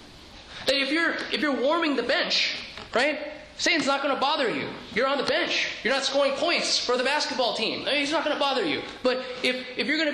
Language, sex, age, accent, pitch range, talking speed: English, male, 30-49, American, 225-285 Hz, 245 wpm